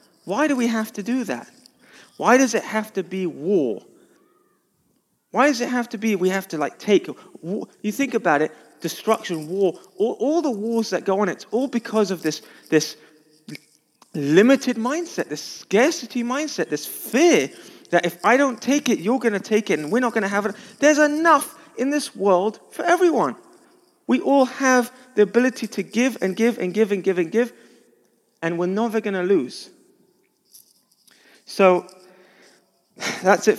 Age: 30-49